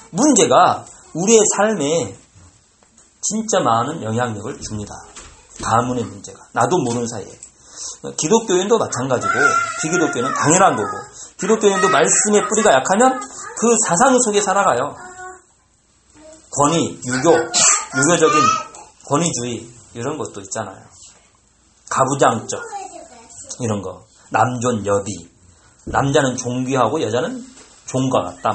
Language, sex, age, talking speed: English, male, 40-59, 90 wpm